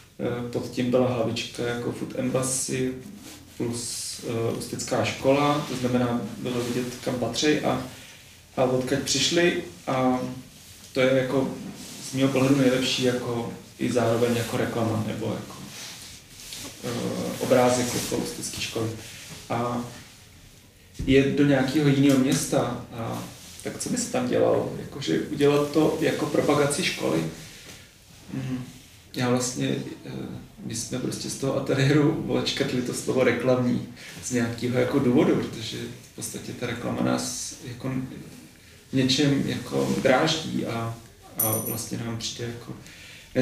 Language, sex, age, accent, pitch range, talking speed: Czech, male, 30-49, native, 115-135 Hz, 130 wpm